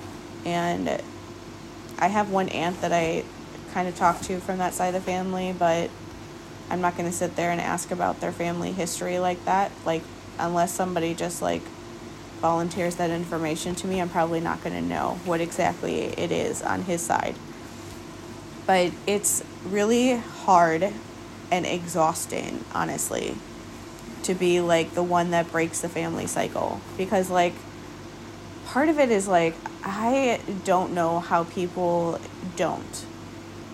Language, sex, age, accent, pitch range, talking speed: English, female, 20-39, American, 165-185 Hz, 150 wpm